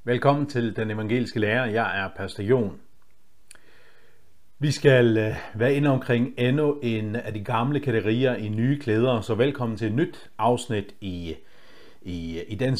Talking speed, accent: 150 wpm, native